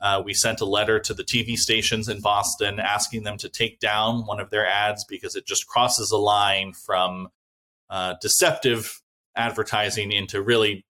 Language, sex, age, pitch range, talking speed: English, male, 20-39, 100-115 Hz, 175 wpm